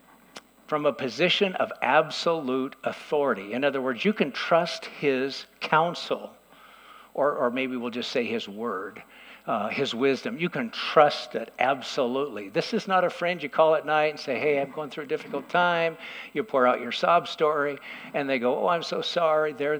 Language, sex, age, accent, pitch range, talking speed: English, male, 60-79, American, 140-185 Hz, 190 wpm